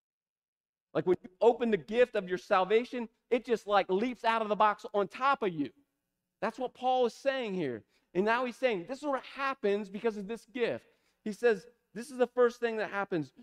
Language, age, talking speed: English, 40-59, 215 wpm